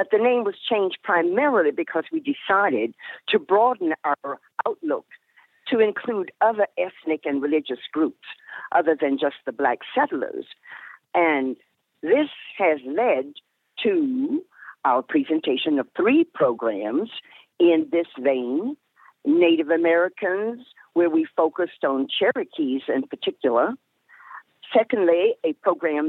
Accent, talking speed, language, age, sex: American, 115 wpm, English, 50-69, female